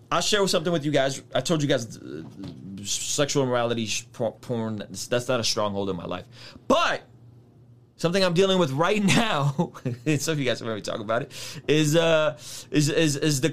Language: English